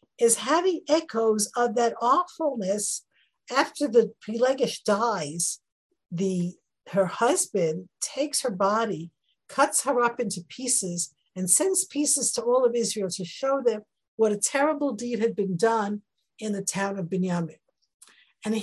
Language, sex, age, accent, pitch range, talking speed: English, female, 50-69, American, 200-270 Hz, 140 wpm